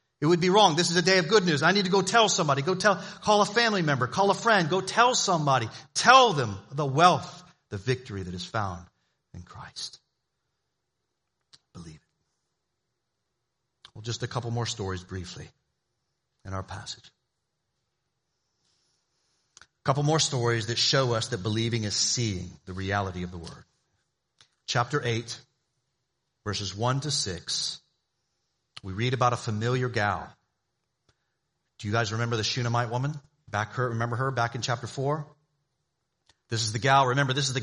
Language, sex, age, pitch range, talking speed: English, male, 40-59, 115-150 Hz, 165 wpm